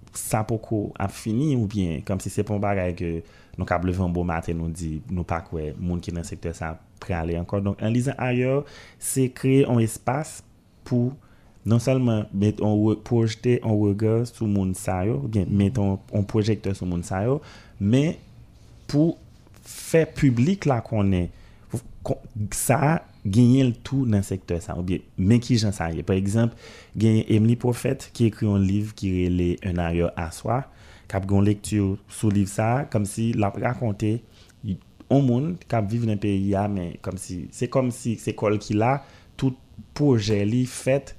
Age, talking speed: 30-49, 180 wpm